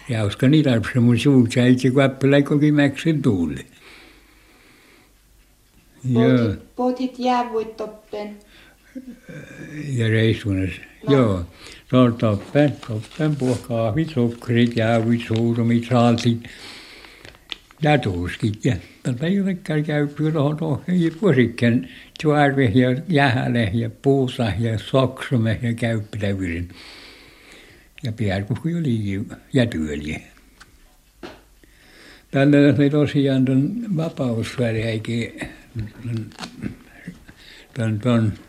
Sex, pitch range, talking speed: male, 115-145 Hz, 65 wpm